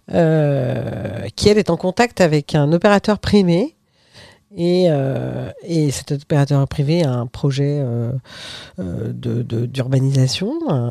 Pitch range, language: 130-170 Hz, French